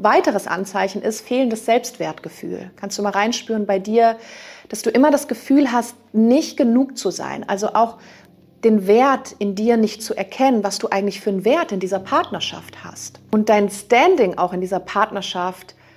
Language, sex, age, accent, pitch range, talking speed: German, female, 40-59, German, 185-230 Hz, 175 wpm